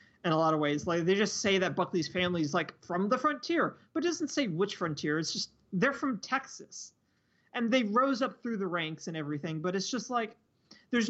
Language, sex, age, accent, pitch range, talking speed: English, male, 30-49, American, 165-215 Hz, 225 wpm